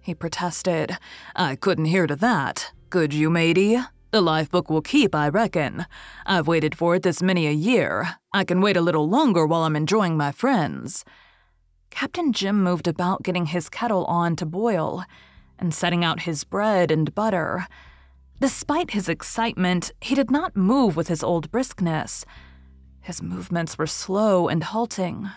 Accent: American